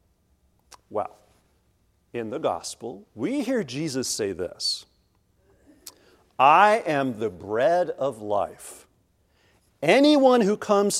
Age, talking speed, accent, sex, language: 50-69, 100 wpm, American, male, English